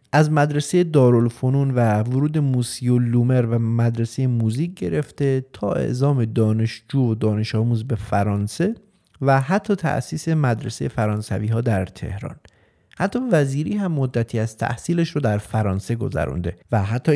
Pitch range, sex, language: 110-145 Hz, male, Persian